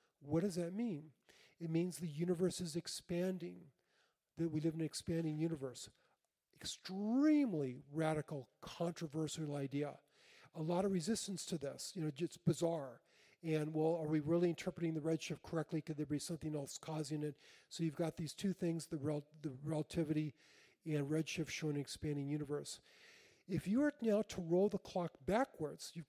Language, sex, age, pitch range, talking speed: English, male, 40-59, 155-185 Hz, 165 wpm